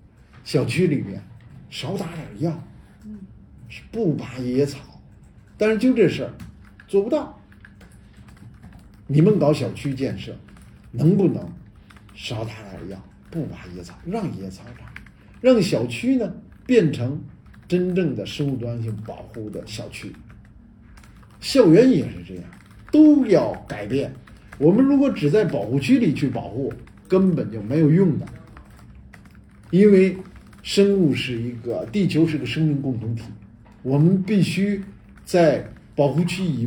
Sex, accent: male, native